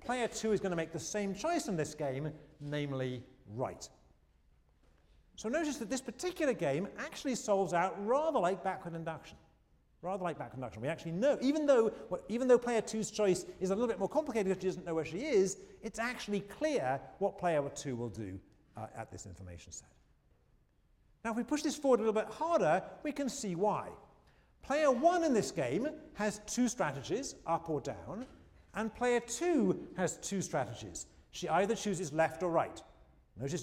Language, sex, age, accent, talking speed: English, male, 40-59, British, 185 wpm